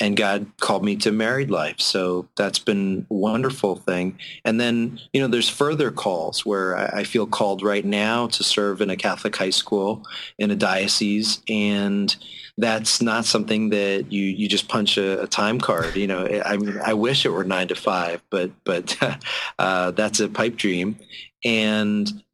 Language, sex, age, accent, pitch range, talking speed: English, male, 30-49, American, 100-110 Hz, 180 wpm